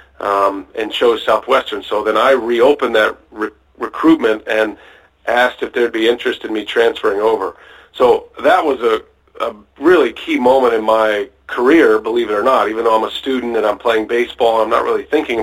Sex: male